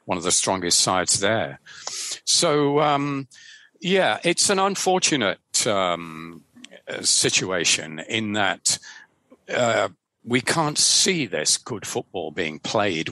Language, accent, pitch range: English, British, 95-135 Hz